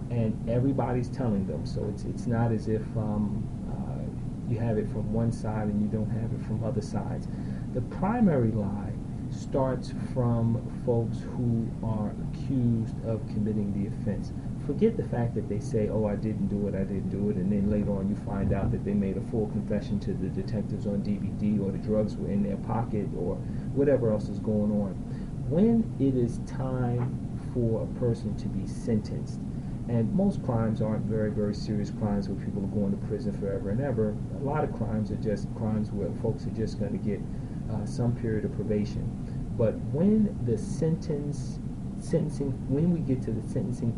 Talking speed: 195 wpm